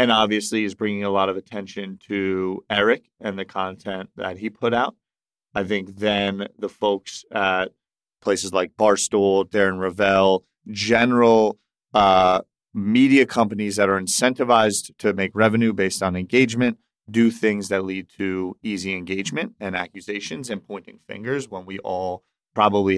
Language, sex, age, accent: English, male, 30-49, American